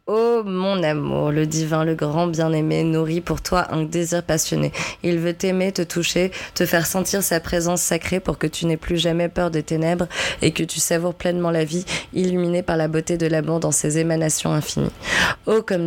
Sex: female